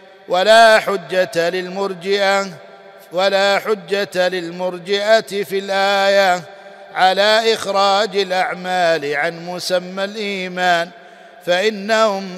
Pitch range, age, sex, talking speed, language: 180-200 Hz, 50-69, male, 75 wpm, Arabic